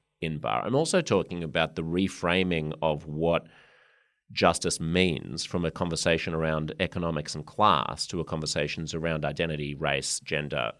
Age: 30-49